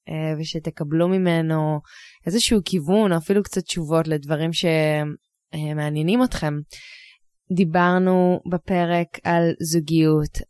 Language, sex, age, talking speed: Hebrew, female, 20-39, 85 wpm